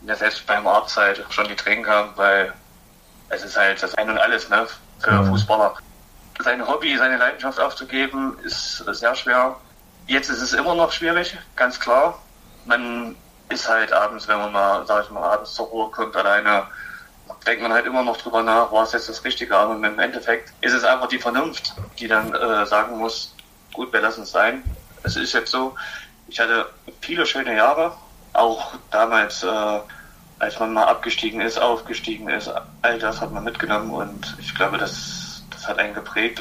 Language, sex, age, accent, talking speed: German, male, 30-49, German, 185 wpm